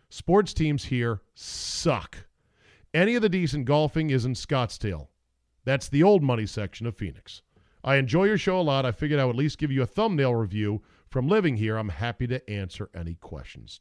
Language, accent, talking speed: English, American, 195 wpm